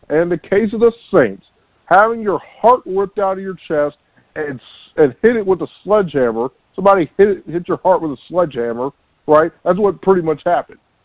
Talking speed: 200 wpm